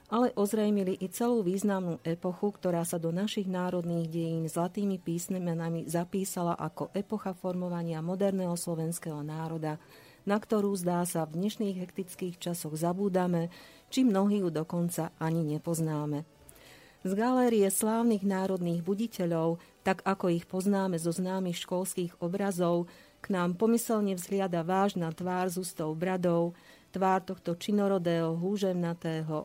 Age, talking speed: 40-59, 130 wpm